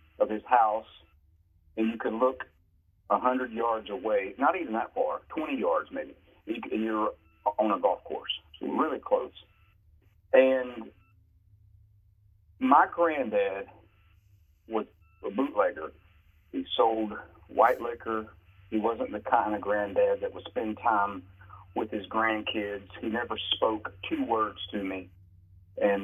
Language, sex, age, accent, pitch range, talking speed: English, male, 40-59, American, 90-110 Hz, 130 wpm